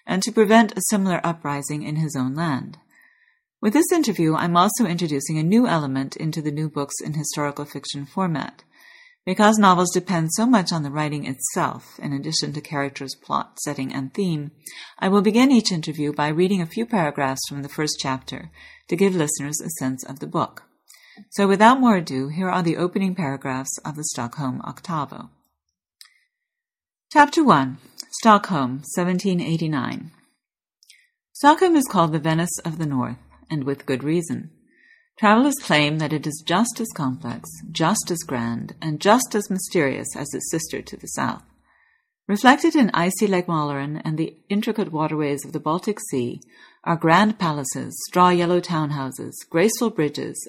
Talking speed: 160 wpm